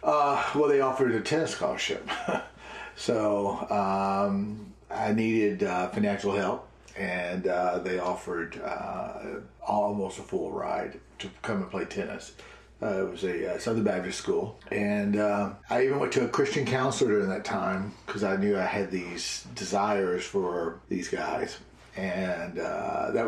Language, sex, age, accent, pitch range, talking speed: English, male, 40-59, American, 100-140 Hz, 155 wpm